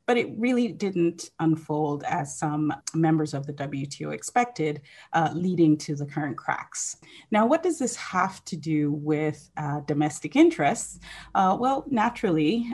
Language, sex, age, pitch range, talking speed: English, female, 30-49, 150-190 Hz, 150 wpm